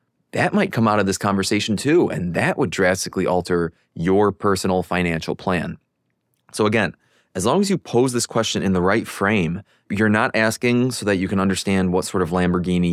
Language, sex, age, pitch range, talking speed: English, male, 20-39, 90-105 Hz, 195 wpm